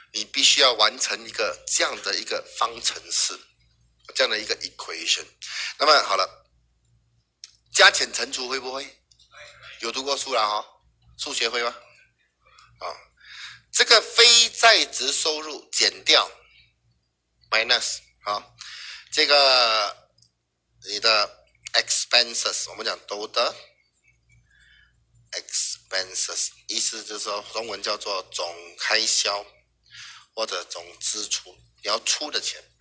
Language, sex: Chinese, male